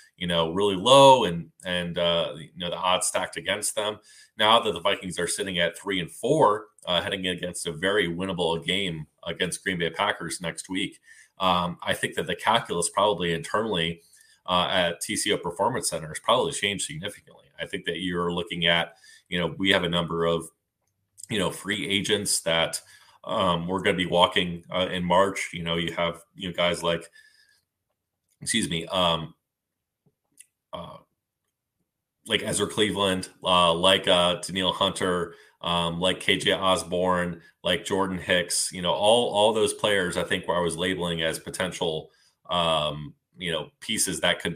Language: English